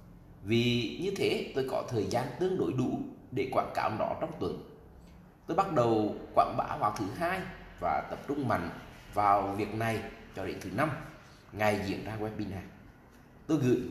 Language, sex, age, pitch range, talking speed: Vietnamese, male, 20-39, 95-135 Hz, 175 wpm